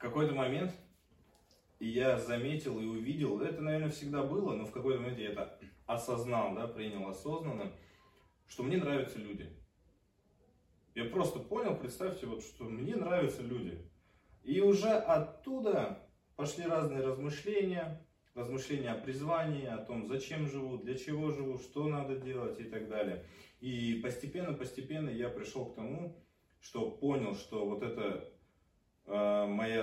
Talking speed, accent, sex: 135 wpm, native, male